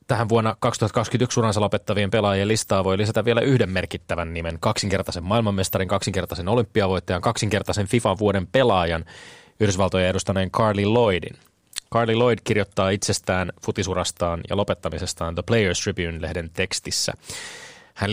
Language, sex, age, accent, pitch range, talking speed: Finnish, male, 20-39, native, 95-115 Hz, 120 wpm